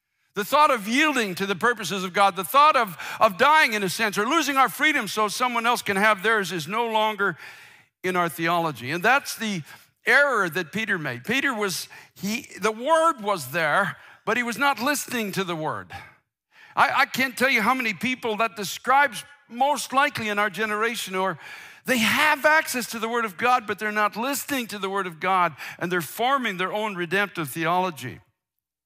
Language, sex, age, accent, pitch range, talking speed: English, male, 60-79, American, 175-240 Hz, 200 wpm